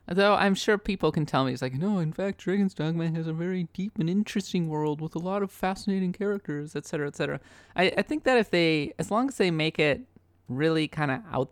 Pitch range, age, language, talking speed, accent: 130-180 Hz, 30-49, English, 245 wpm, American